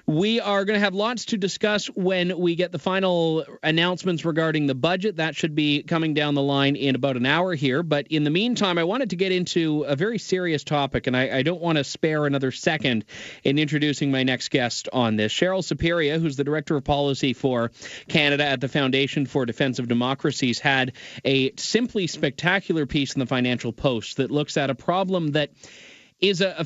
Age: 30-49